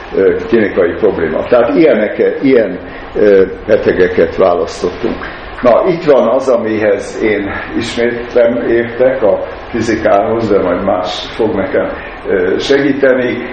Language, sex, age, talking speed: Hungarian, male, 60-79, 105 wpm